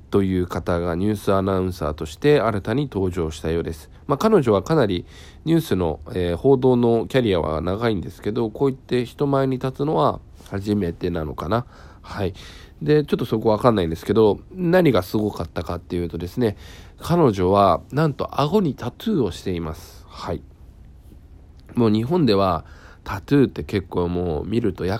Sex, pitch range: male, 85-115 Hz